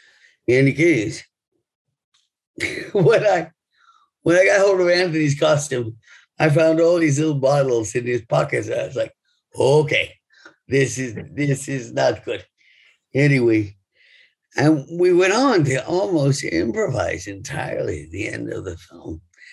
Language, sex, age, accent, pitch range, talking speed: English, male, 50-69, American, 115-170 Hz, 145 wpm